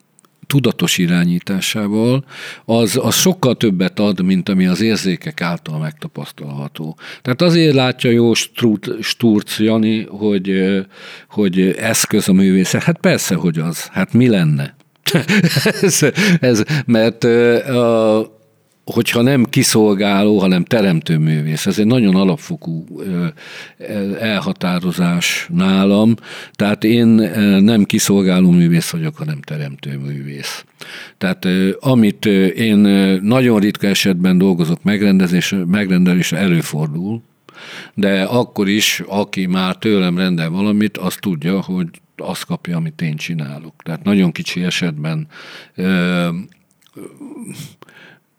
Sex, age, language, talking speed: male, 50-69, Hungarian, 105 wpm